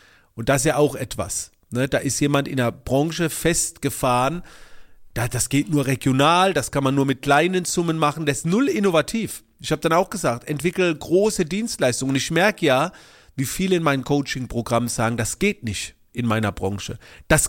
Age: 40-59